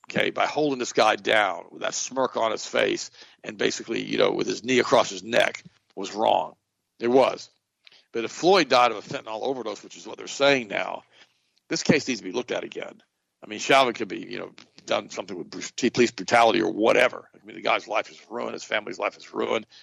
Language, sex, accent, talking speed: English, male, American, 225 wpm